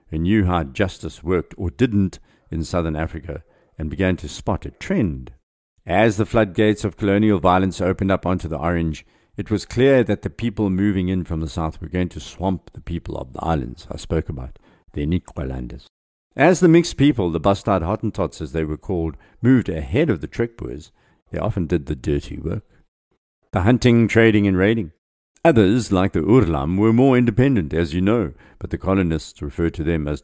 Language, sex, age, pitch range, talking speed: English, male, 50-69, 80-110 Hz, 190 wpm